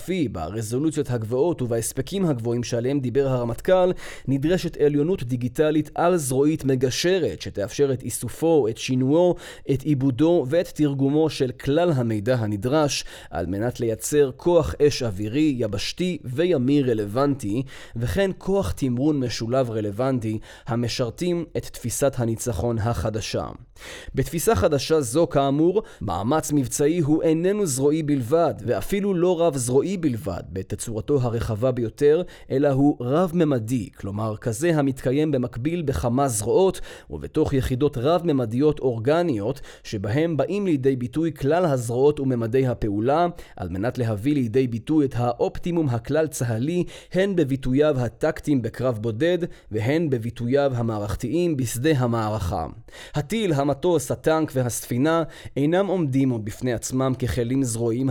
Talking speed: 115 wpm